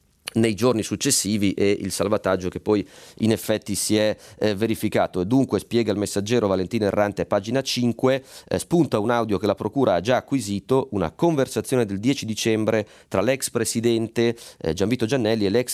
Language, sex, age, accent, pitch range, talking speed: Italian, male, 30-49, native, 100-120 Hz, 175 wpm